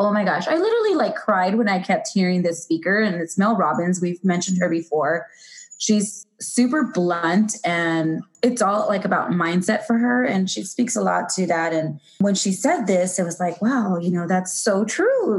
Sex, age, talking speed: female, 20-39, 205 wpm